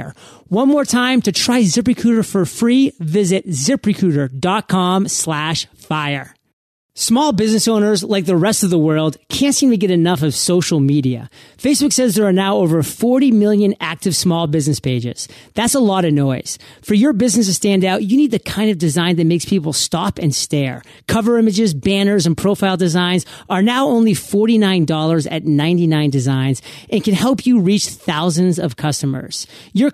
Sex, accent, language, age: male, American, English, 40-59